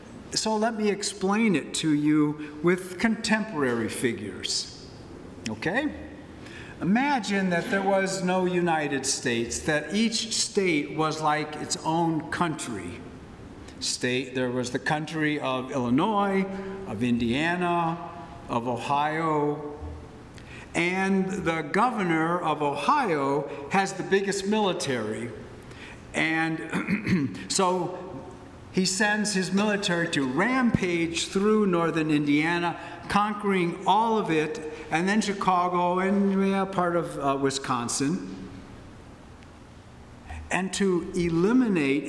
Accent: American